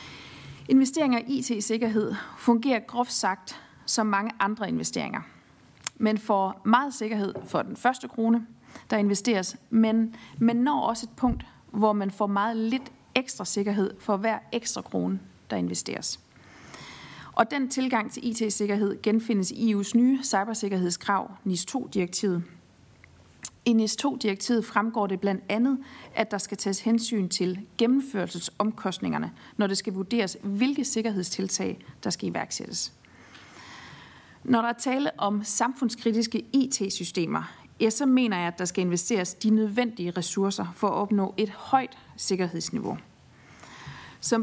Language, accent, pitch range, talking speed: Danish, native, 195-235 Hz, 130 wpm